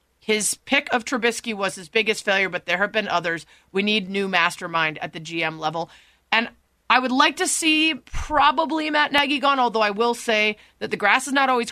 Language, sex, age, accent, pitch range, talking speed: English, female, 30-49, American, 180-250 Hz, 210 wpm